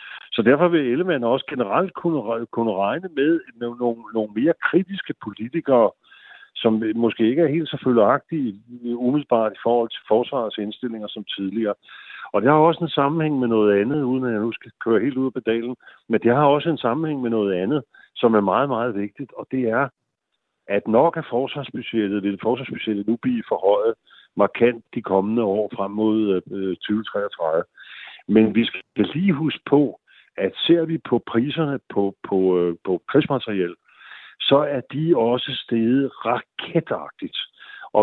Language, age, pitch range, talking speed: Danish, 50-69, 105-140 Hz, 165 wpm